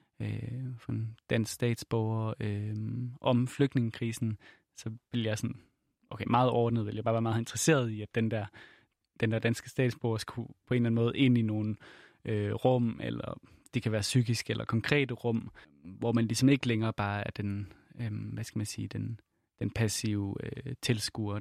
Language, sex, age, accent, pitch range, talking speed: Danish, male, 20-39, native, 110-130 Hz, 180 wpm